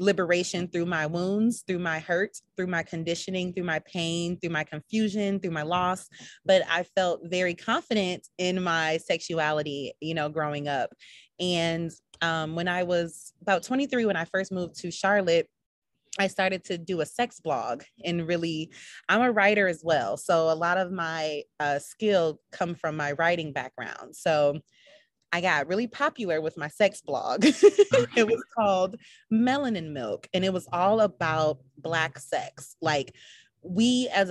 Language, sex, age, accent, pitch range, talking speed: English, female, 30-49, American, 155-195 Hz, 165 wpm